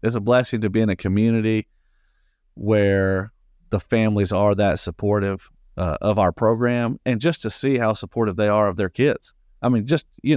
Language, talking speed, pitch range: English, 190 wpm, 105-130 Hz